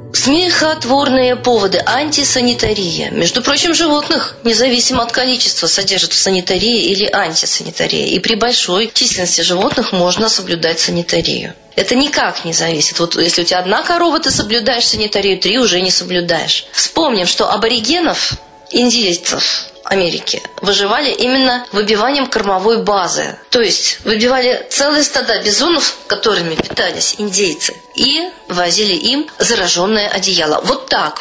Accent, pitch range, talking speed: native, 180-260 Hz, 125 wpm